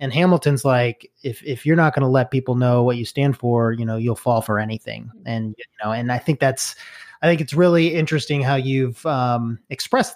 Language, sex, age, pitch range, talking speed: English, male, 20-39, 120-145 Hz, 225 wpm